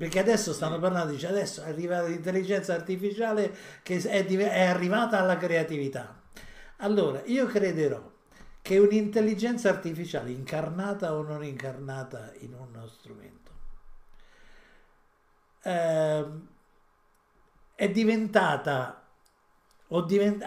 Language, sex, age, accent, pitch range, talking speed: Italian, male, 50-69, native, 155-205 Hz, 105 wpm